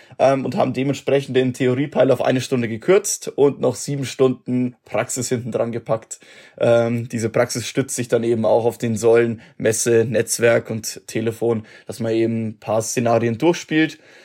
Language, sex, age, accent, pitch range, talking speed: German, male, 20-39, German, 115-145 Hz, 160 wpm